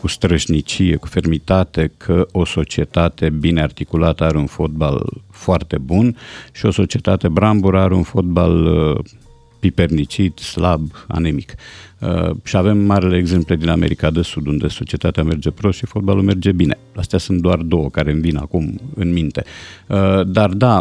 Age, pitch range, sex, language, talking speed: 50-69, 85-105 Hz, male, Romanian, 150 wpm